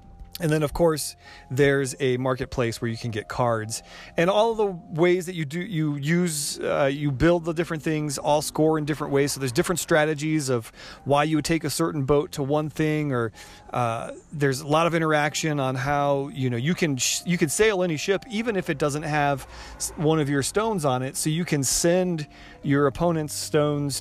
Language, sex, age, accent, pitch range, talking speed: English, male, 40-59, American, 130-165 Hz, 210 wpm